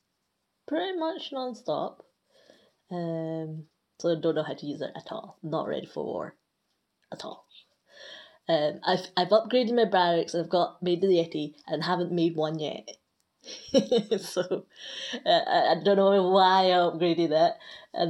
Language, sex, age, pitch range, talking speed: English, female, 20-39, 165-215 Hz, 155 wpm